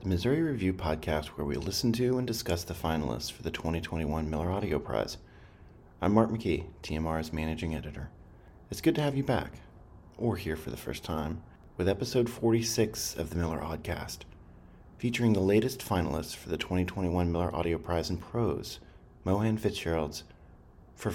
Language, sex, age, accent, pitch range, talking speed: English, male, 40-59, American, 80-100 Hz, 165 wpm